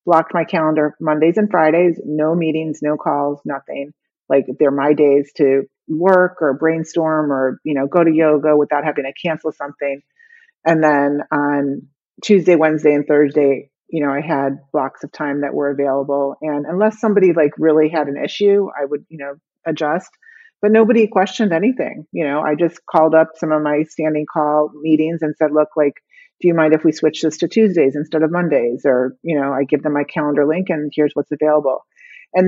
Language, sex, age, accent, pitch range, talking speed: English, female, 30-49, American, 140-165 Hz, 195 wpm